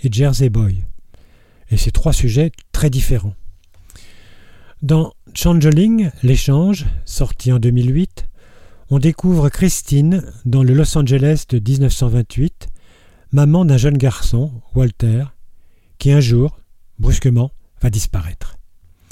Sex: male